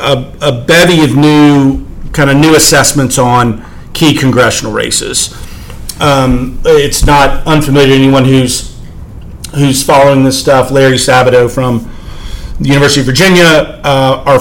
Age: 40-59